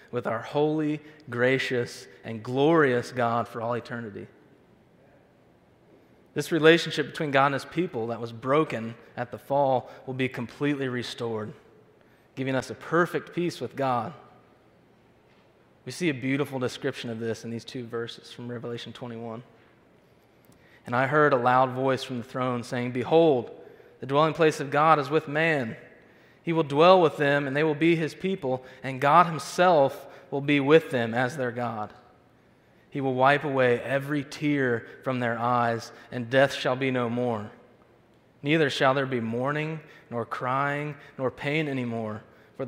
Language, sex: English, male